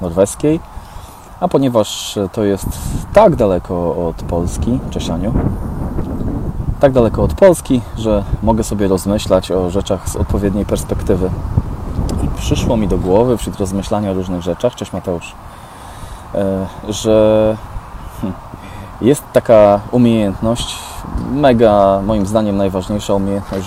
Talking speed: 110 wpm